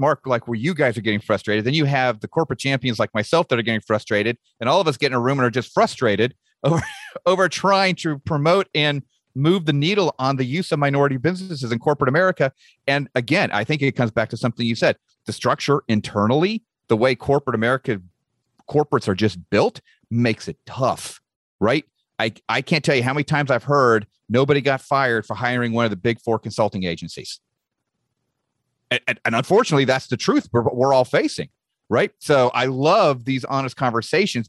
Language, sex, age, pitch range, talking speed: English, male, 40-59, 115-150 Hz, 200 wpm